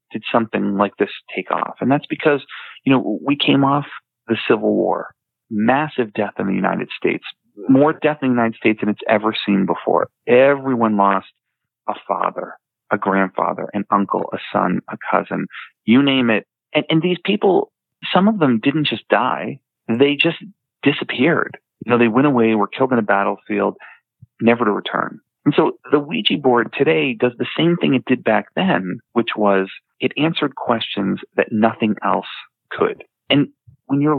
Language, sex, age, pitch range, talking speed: English, male, 40-59, 105-145 Hz, 175 wpm